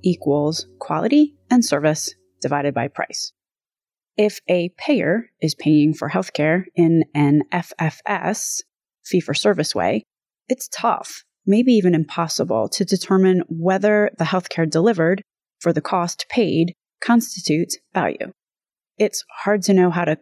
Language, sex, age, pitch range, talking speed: English, female, 30-49, 160-205 Hz, 130 wpm